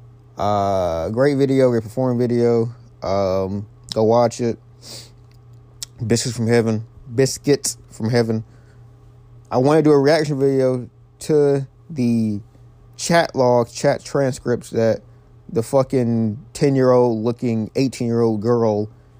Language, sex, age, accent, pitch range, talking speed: English, male, 20-39, American, 110-125 Hz, 125 wpm